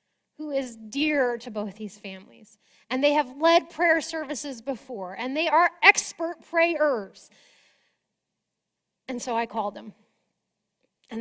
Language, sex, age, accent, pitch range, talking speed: English, female, 30-49, American, 235-310 Hz, 135 wpm